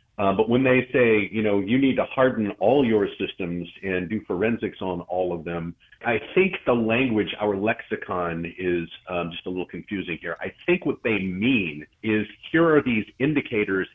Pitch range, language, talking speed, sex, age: 90-110 Hz, English, 190 wpm, male, 40-59